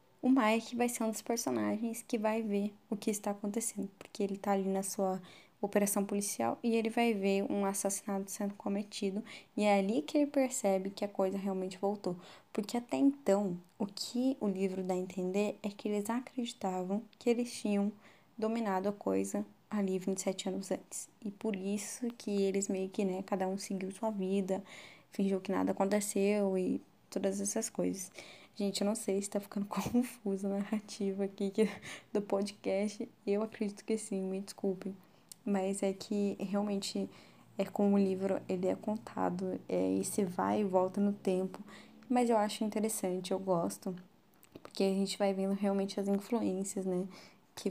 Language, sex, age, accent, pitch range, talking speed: Portuguese, female, 10-29, Brazilian, 195-215 Hz, 175 wpm